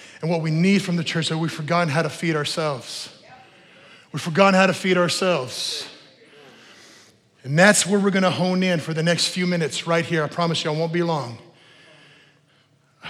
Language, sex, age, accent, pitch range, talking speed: English, male, 30-49, American, 160-220 Hz, 195 wpm